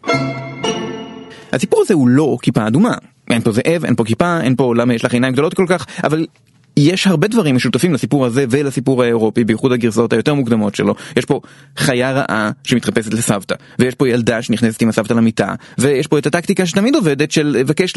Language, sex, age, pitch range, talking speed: Hebrew, male, 30-49, 125-160 Hz, 185 wpm